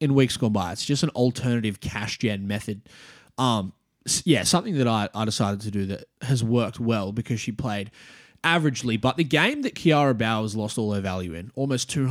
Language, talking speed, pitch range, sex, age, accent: English, 200 wpm, 105-135 Hz, male, 20-39, Australian